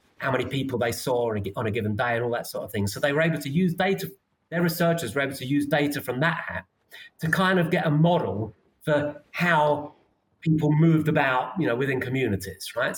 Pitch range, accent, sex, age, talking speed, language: 130-165 Hz, British, male, 30-49, 220 wpm, English